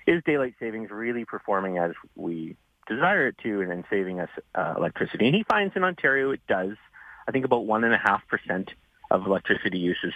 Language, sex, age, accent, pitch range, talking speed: English, male, 30-49, American, 95-155 Hz, 200 wpm